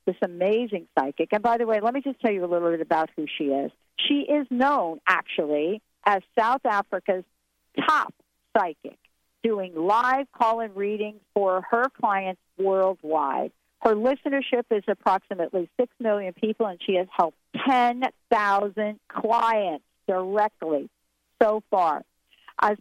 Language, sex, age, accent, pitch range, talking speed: English, female, 50-69, American, 190-245 Hz, 140 wpm